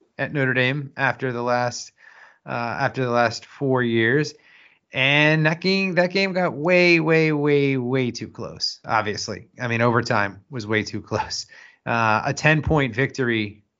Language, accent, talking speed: English, American, 160 wpm